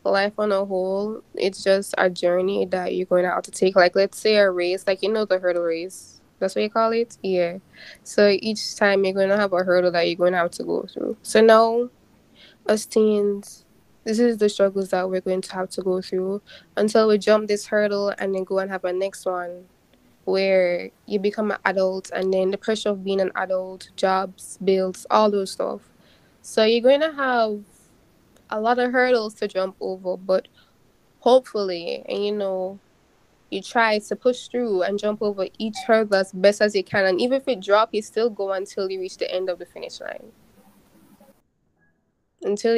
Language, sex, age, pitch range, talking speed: English, female, 10-29, 190-215 Hz, 205 wpm